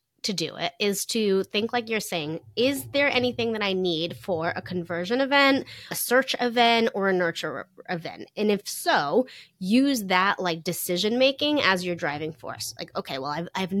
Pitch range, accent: 170-235 Hz, American